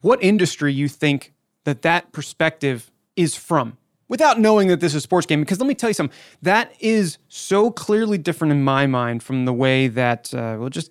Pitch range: 130-170 Hz